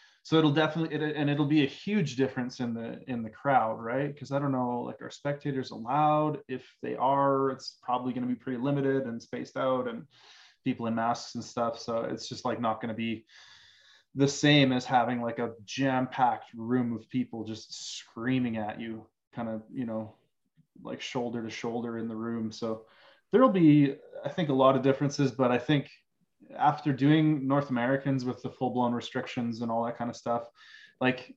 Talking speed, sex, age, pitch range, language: 200 wpm, male, 20-39, 115-140 Hz, English